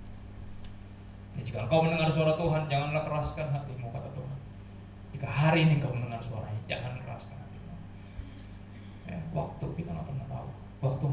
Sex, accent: male, native